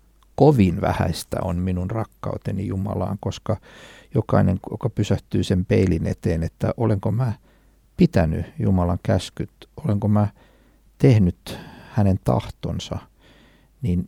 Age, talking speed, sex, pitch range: 60-79, 105 wpm, male, 95-115 Hz